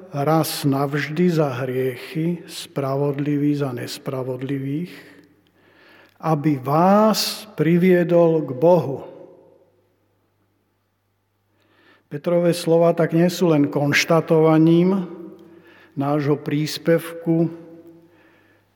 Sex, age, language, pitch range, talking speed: male, 50-69, Slovak, 140-170 Hz, 65 wpm